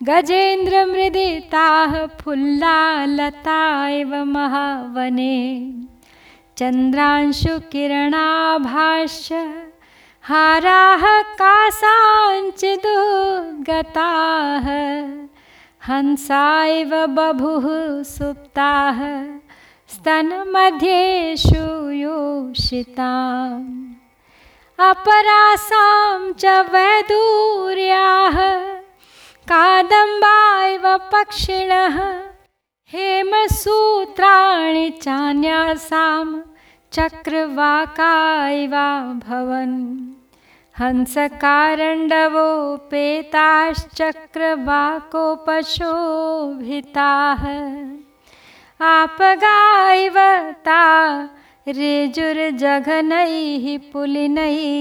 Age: 30-49